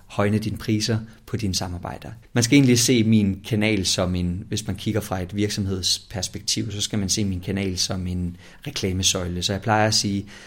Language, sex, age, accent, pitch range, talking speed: Danish, male, 30-49, native, 100-120 Hz, 195 wpm